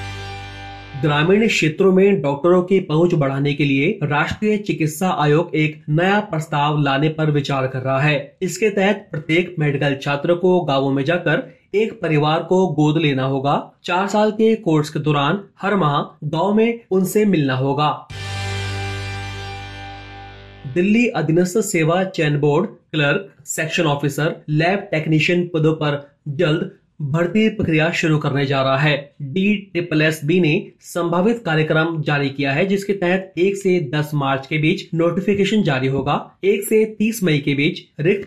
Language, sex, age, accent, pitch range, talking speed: Hindi, male, 30-49, native, 145-185 Hz, 150 wpm